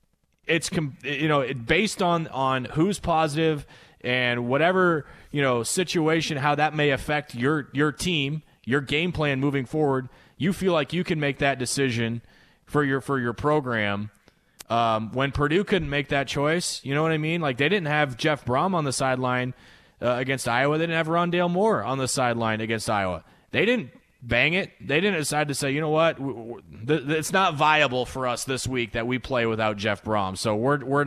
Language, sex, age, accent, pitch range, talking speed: English, male, 20-39, American, 120-155 Hz, 195 wpm